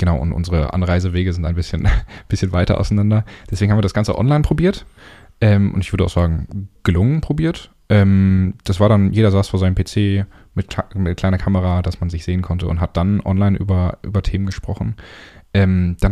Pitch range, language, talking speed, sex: 85-100 Hz, German, 195 wpm, male